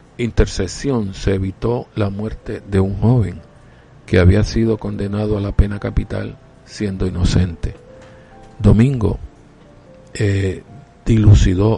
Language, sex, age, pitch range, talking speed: Spanish, male, 50-69, 95-110 Hz, 105 wpm